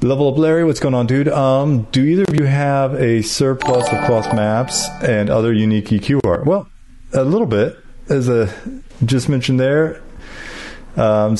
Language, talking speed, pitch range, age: English, 170 wpm, 95-135 Hz, 40-59